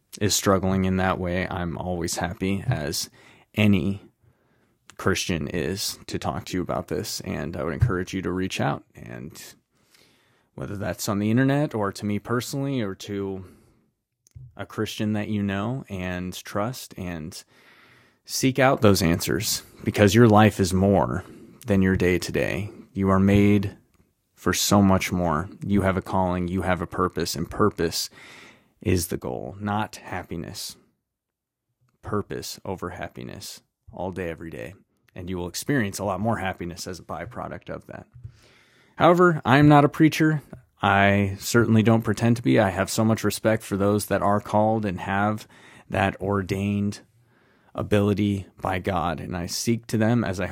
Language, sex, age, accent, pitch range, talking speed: English, male, 30-49, American, 95-110 Hz, 160 wpm